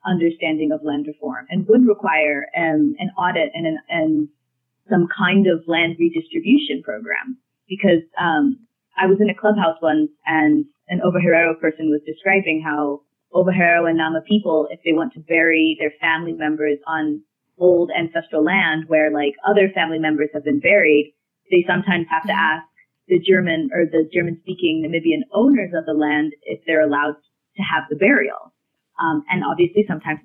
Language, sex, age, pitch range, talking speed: English, female, 20-39, 155-200 Hz, 165 wpm